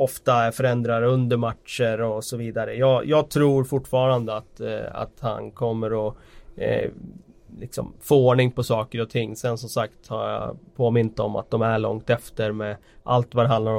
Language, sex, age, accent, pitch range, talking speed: Swedish, male, 30-49, native, 115-135 Hz, 185 wpm